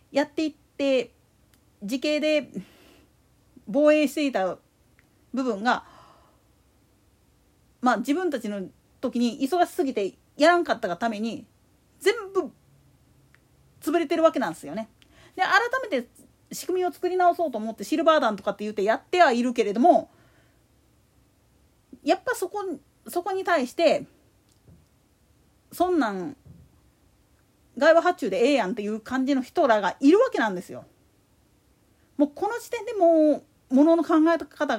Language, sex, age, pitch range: Japanese, female, 40-59, 255-360 Hz